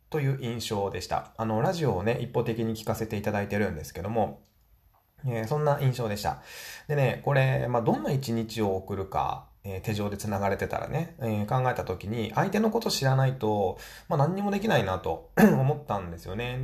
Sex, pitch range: male, 95-135 Hz